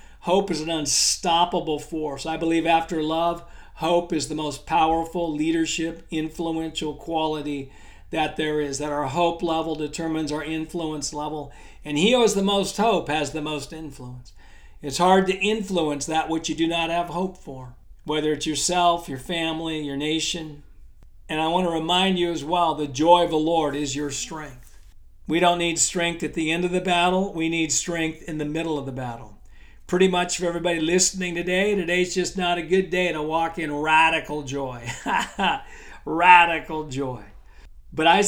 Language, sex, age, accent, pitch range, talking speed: English, male, 50-69, American, 150-175 Hz, 180 wpm